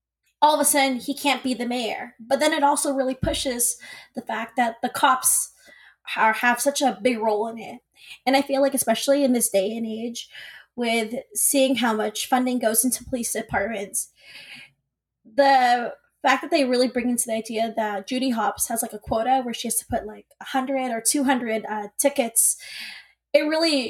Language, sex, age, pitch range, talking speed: English, female, 20-39, 230-270 Hz, 195 wpm